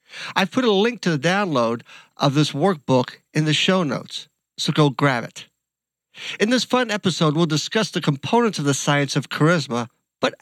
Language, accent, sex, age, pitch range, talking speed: English, American, male, 50-69, 135-190 Hz, 185 wpm